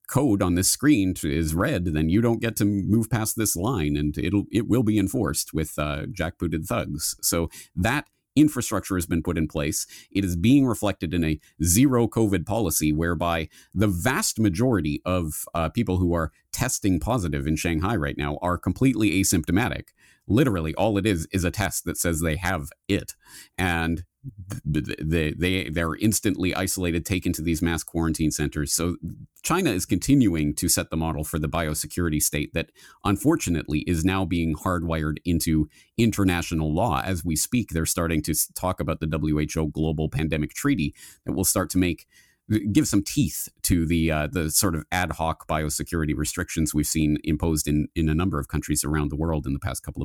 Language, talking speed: English, 180 wpm